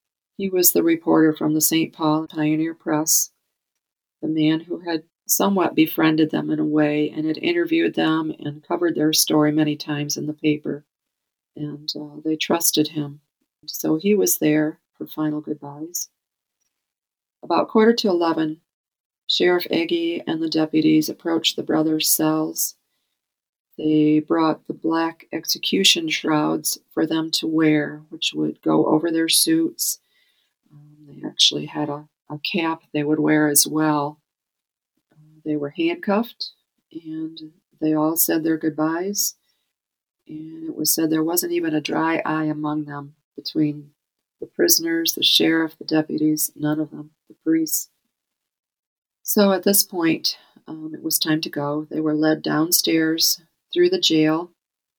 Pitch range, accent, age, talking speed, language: 150-170 Hz, American, 40-59, 150 wpm, English